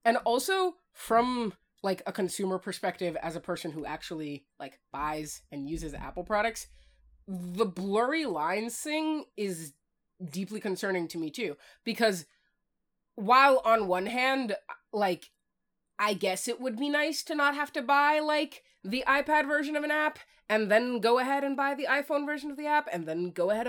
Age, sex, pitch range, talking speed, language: 20-39, female, 165-250 Hz, 170 wpm, English